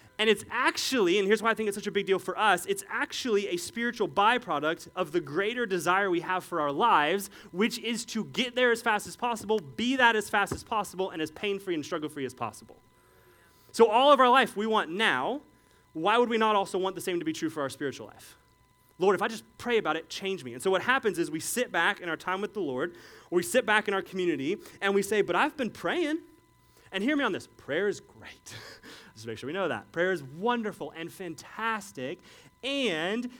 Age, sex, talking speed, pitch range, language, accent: 30-49, male, 230 wpm, 155-215 Hz, English, American